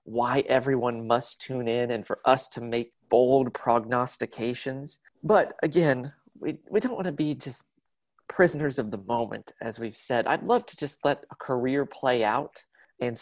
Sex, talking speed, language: male, 170 wpm, English